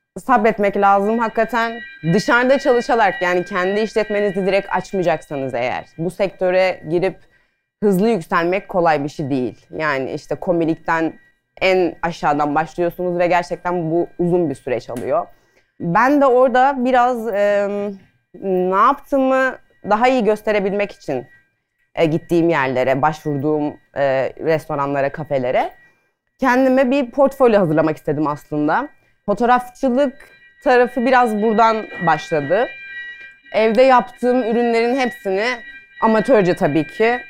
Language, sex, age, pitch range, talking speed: Turkish, female, 30-49, 175-245 Hz, 110 wpm